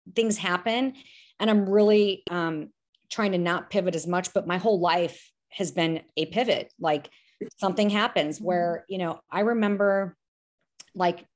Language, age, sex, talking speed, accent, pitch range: English, 30-49, female, 155 wpm, American, 175-210 Hz